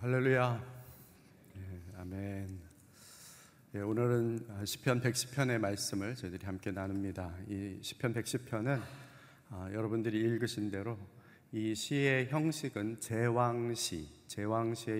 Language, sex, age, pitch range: Korean, male, 40-59, 100-125 Hz